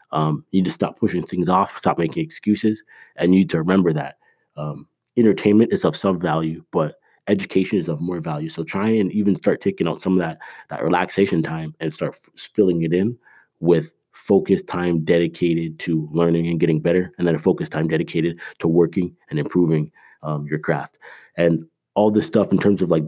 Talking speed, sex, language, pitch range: 205 wpm, male, English, 80-95 Hz